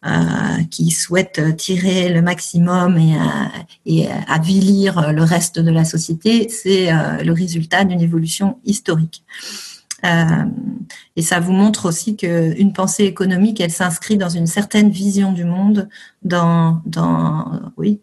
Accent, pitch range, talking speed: French, 165-200 Hz, 125 wpm